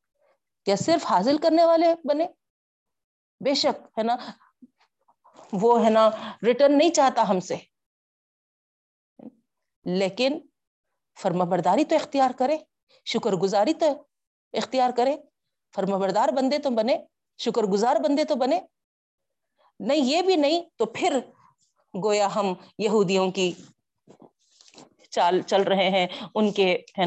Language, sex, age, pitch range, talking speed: Urdu, female, 40-59, 180-250 Hz, 115 wpm